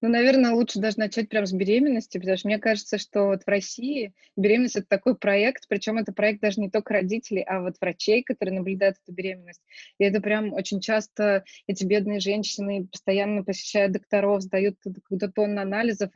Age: 20-39